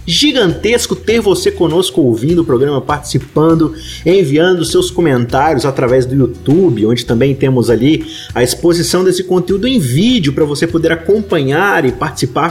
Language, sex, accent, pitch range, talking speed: Portuguese, male, Brazilian, 135-180 Hz, 145 wpm